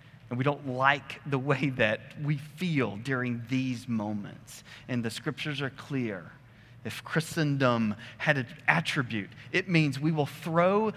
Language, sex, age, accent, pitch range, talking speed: English, male, 30-49, American, 120-145 Hz, 150 wpm